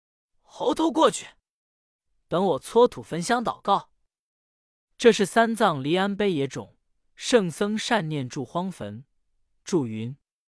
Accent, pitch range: native, 130-200 Hz